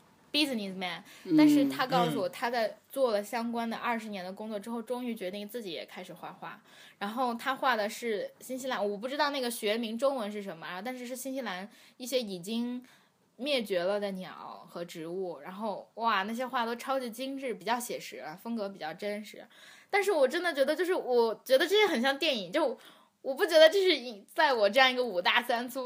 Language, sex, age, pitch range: Chinese, female, 20-39, 200-270 Hz